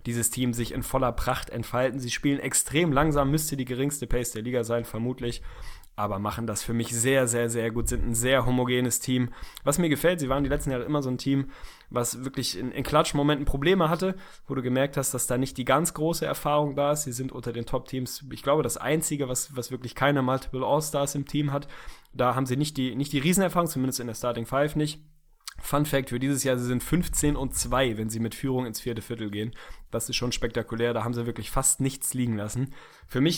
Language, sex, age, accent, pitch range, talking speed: German, male, 20-39, German, 120-140 Hz, 230 wpm